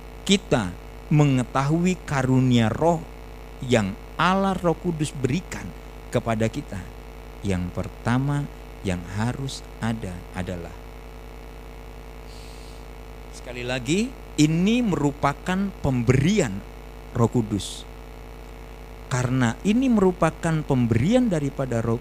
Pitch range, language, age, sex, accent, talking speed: 115-165 Hz, Indonesian, 50-69, male, native, 80 wpm